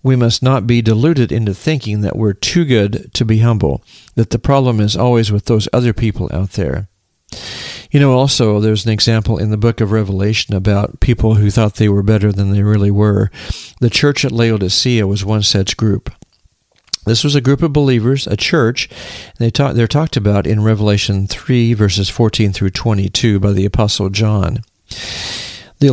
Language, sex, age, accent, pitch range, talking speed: English, male, 50-69, American, 105-125 Hz, 190 wpm